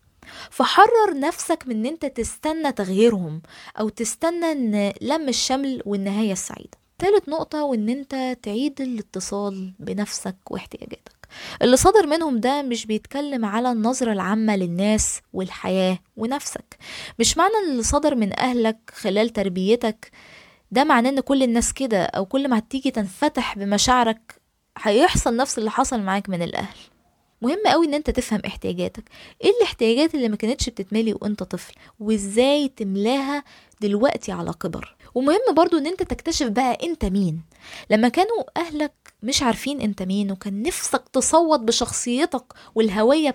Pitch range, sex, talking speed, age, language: 210-285 Hz, female, 140 wpm, 20-39, Arabic